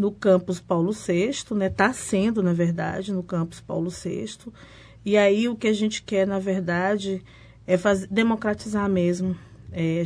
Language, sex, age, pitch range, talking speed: Portuguese, female, 20-39, 170-190 Hz, 155 wpm